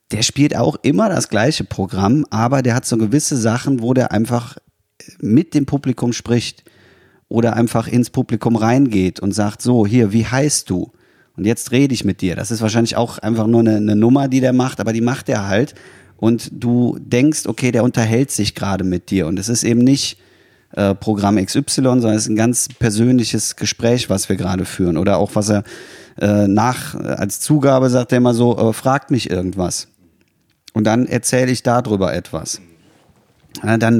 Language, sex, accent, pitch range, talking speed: German, male, German, 105-125 Hz, 190 wpm